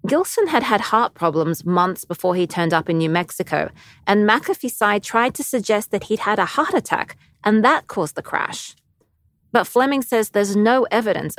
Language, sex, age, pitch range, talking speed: English, female, 30-49, 175-230 Hz, 190 wpm